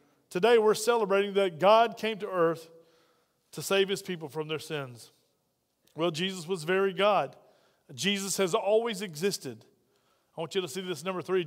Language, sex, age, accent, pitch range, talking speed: English, male, 40-59, American, 185-220 Hz, 165 wpm